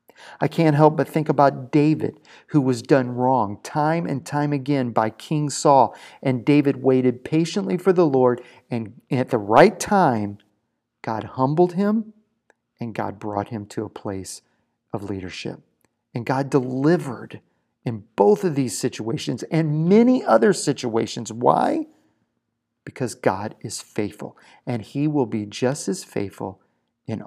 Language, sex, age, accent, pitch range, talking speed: English, male, 40-59, American, 105-145 Hz, 145 wpm